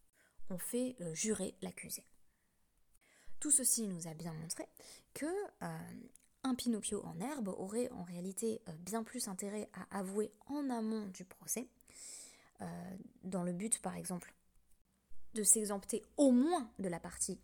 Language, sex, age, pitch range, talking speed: French, female, 20-39, 175-235 Hz, 150 wpm